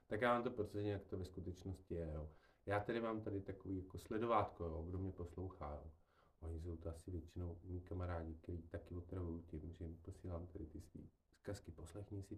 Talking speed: 210 wpm